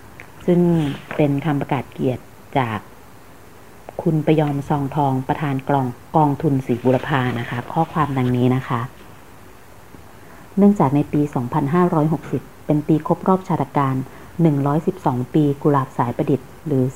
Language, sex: Thai, female